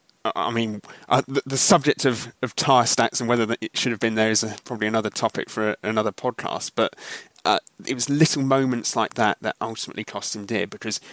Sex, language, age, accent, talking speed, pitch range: male, English, 30-49, British, 220 wpm, 105-120 Hz